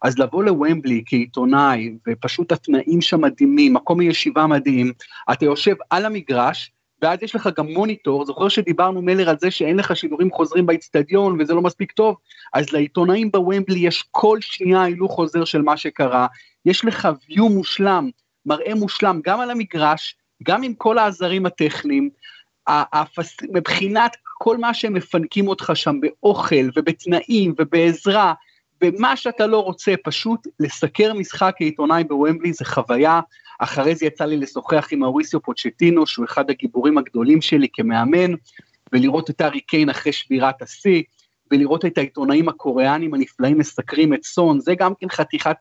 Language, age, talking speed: Hebrew, 30-49, 150 wpm